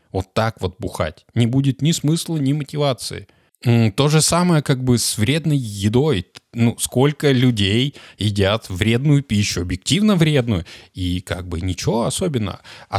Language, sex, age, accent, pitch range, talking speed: Russian, male, 20-39, native, 100-140 Hz, 145 wpm